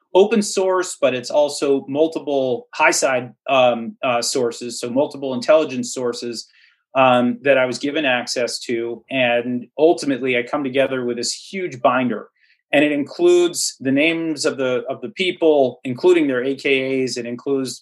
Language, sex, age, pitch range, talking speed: English, male, 30-49, 125-155 Hz, 155 wpm